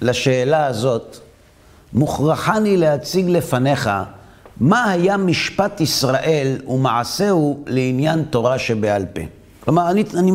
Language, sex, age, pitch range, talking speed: Hebrew, male, 50-69, 125-180 Hz, 100 wpm